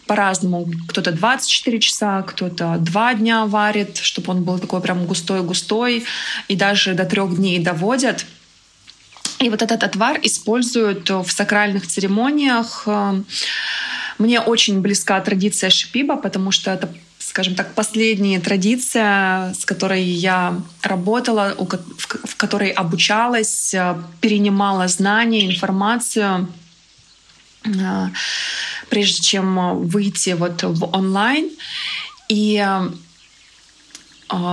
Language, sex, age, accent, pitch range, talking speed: Russian, female, 20-39, native, 185-215 Hz, 100 wpm